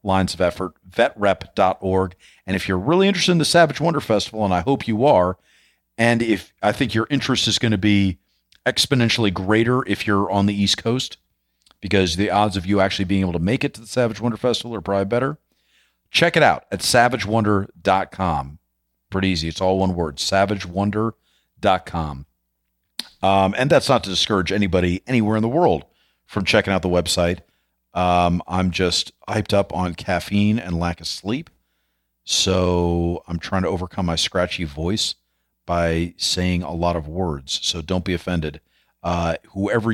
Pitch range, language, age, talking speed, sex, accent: 85-105 Hz, English, 40-59, 175 wpm, male, American